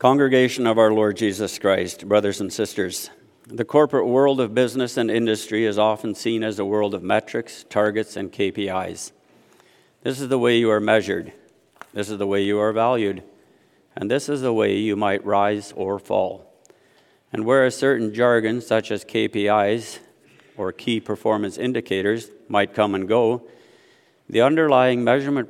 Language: English